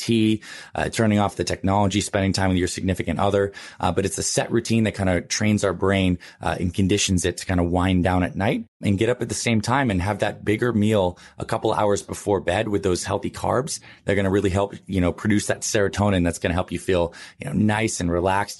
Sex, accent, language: male, American, English